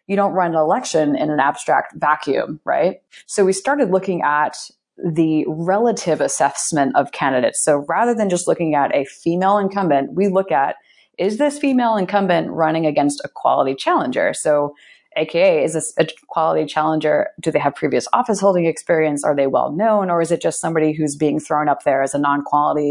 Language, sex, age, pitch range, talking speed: English, female, 30-49, 155-200 Hz, 190 wpm